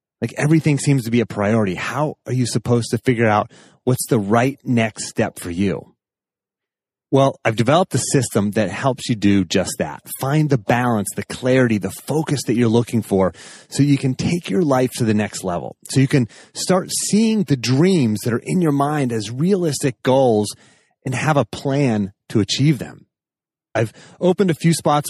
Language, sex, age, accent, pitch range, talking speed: English, male, 30-49, American, 110-145 Hz, 190 wpm